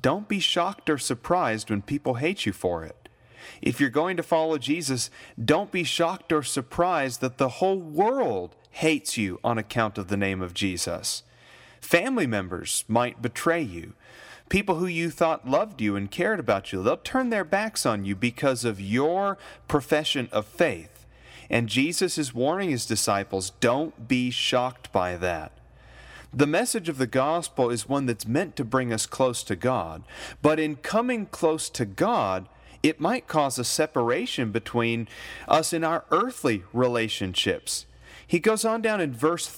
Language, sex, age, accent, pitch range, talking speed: English, male, 30-49, American, 115-165 Hz, 170 wpm